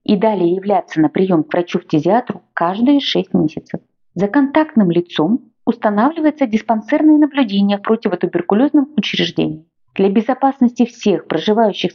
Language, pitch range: Russian, 170-235 Hz